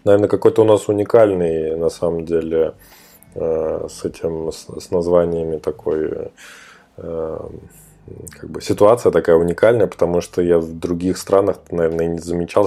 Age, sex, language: 20-39, male, Russian